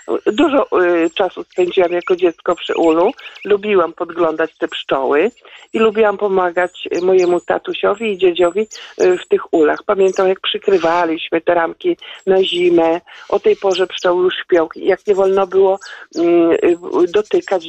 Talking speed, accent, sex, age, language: 130 wpm, native, male, 50-69, Polish